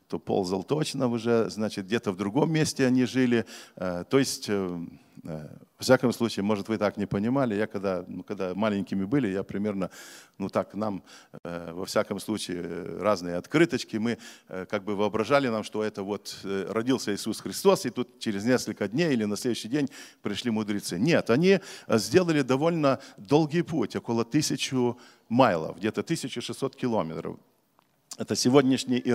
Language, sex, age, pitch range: Russian, male, 50-69, 100-135 Hz